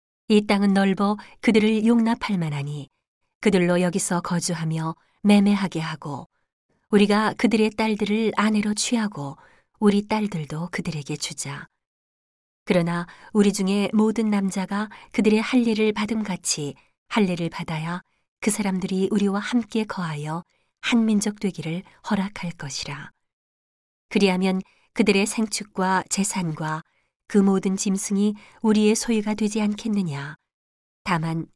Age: 40-59